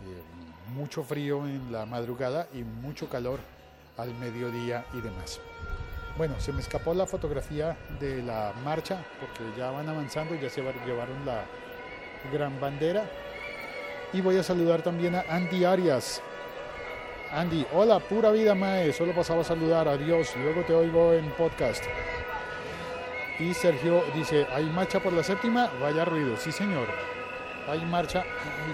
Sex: male